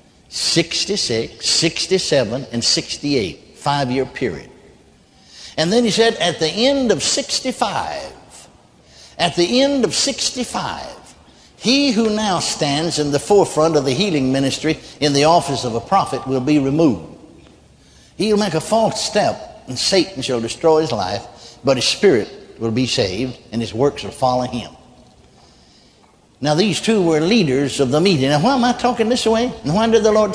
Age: 60-79